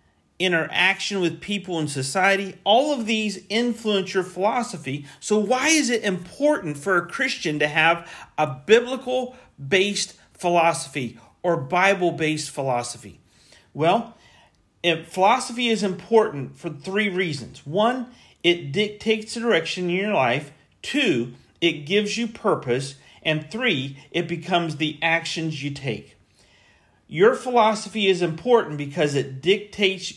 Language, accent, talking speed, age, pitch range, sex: English, American, 125 wpm, 40-59, 140-210 Hz, male